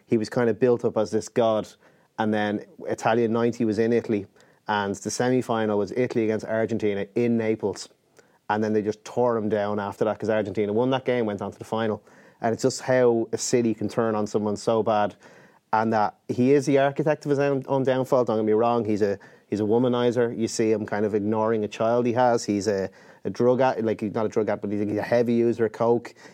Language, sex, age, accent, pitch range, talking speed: English, male, 30-49, Irish, 105-120 Hz, 240 wpm